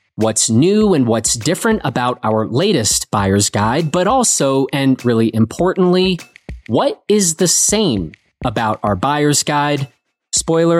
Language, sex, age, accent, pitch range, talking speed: English, male, 30-49, American, 115-175 Hz, 135 wpm